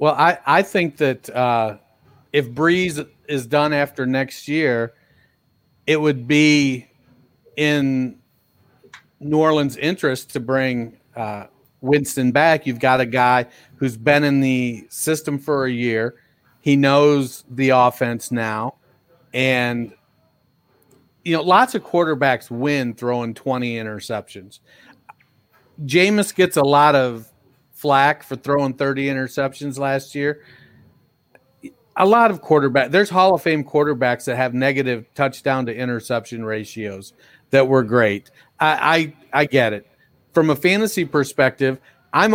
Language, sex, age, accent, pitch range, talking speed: English, male, 40-59, American, 125-150 Hz, 130 wpm